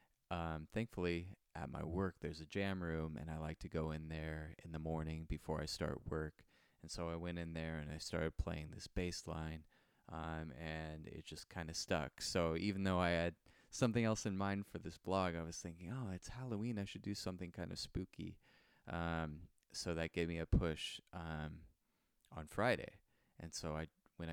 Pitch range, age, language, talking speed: 80-90 Hz, 20-39, English, 200 wpm